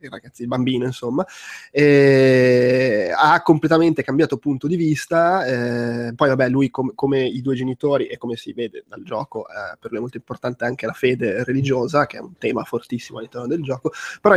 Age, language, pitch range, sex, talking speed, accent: 20-39, Italian, 125-150 Hz, male, 190 wpm, native